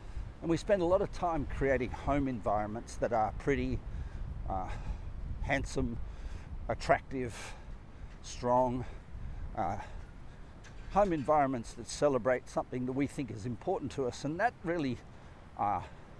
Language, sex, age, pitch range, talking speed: English, male, 50-69, 100-130 Hz, 125 wpm